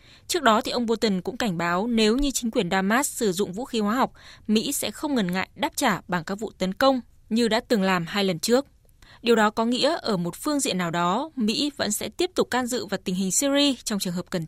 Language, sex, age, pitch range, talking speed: Vietnamese, female, 20-39, 190-250 Hz, 260 wpm